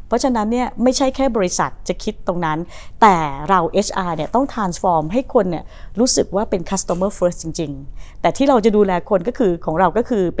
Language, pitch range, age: Thai, 170-220 Hz, 30-49